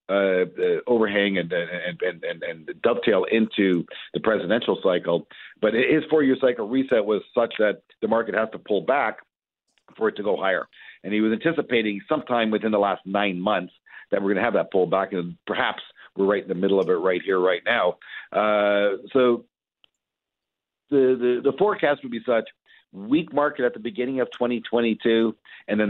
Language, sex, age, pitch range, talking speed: English, male, 50-69, 100-130 Hz, 185 wpm